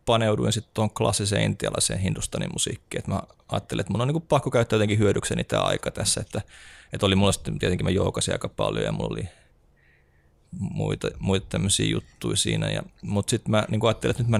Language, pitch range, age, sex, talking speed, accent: Finnish, 85-110 Hz, 30-49, male, 190 wpm, native